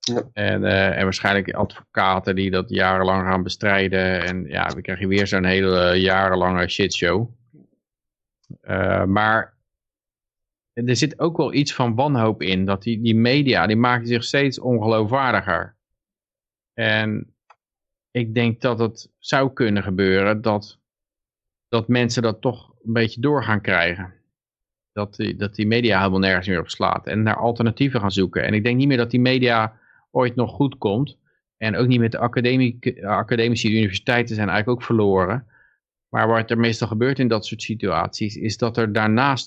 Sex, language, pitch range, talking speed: male, Dutch, 100-120 Hz, 165 wpm